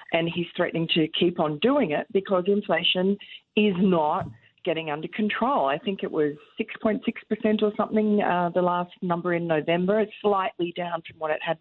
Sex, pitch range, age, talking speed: female, 155-205 Hz, 40-59, 180 wpm